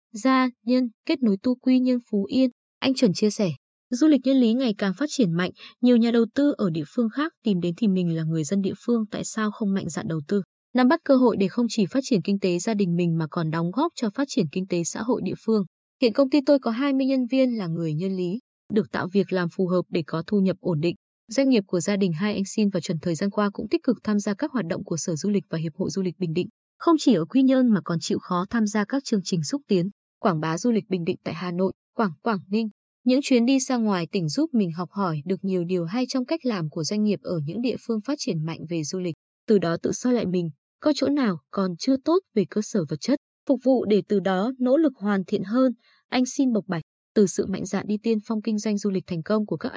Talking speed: 280 wpm